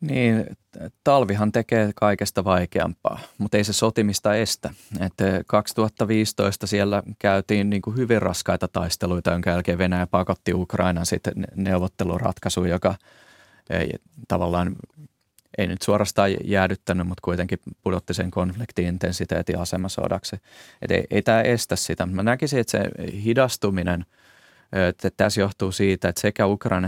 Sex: male